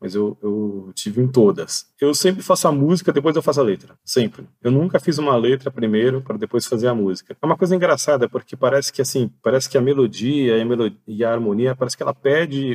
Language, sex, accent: Portuguese, male, Brazilian